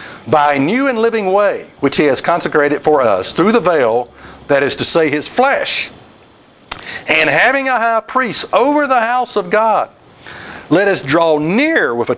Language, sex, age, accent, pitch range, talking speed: English, male, 60-79, American, 130-185 Hz, 180 wpm